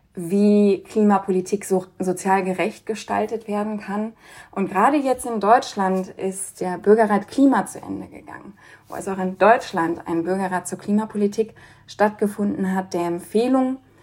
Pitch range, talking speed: 180-210 Hz, 145 wpm